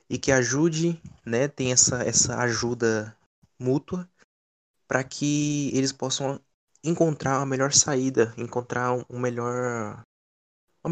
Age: 20-39